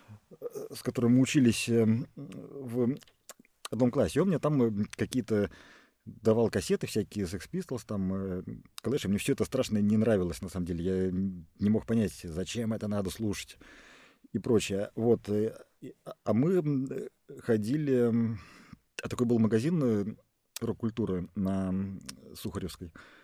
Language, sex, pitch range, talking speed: Russian, male, 100-125 Hz, 125 wpm